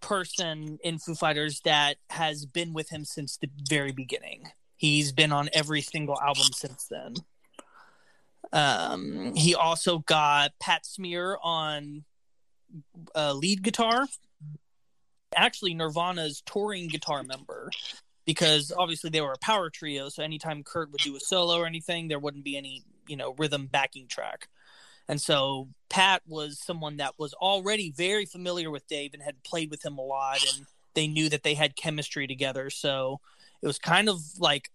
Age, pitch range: 20-39, 140-170 Hz